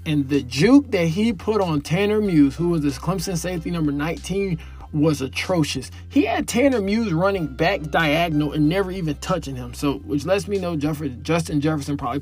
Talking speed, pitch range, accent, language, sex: 190 wpm, 135-165 Hz, American, English, male